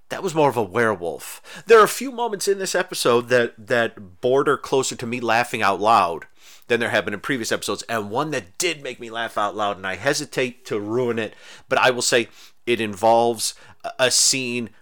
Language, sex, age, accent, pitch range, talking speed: English, male, 30-49, American, 95-125 Hz, 215 wpm